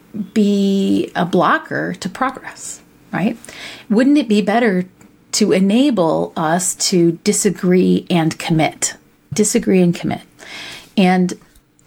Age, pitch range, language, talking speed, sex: 40-59, 175-220 Hz, English, 105 wpm, female